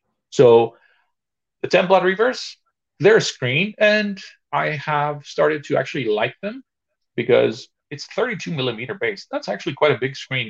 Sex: male